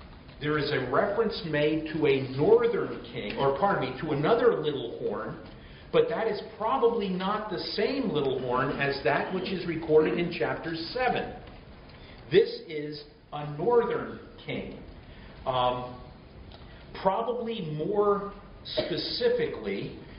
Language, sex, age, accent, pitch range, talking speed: Italian, male, 50-69, American, 135-200 Hz, 125 wpm